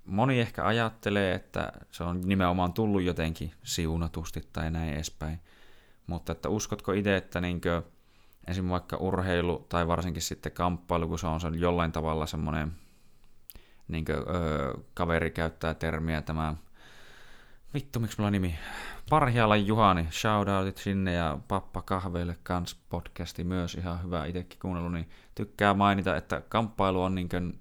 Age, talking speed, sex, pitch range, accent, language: 30-49, 140 wpm, male, 80-95 Hz, native, Finnish